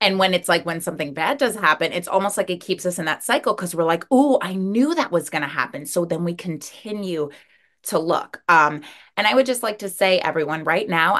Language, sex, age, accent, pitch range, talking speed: English, female, 20-39, American, 160-195 Hz, 245 wpm